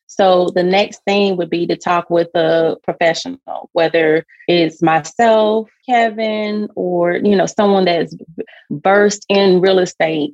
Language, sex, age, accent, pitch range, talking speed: English, female, 30-49, American, 165-195 Hz, 140 wpm